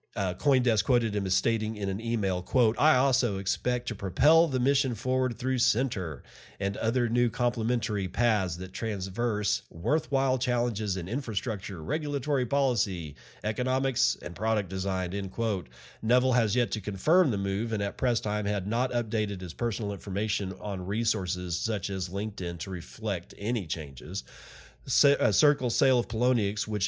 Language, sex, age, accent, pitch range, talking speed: English, male, 40-59, American, 100-125 Hz, 160 wpm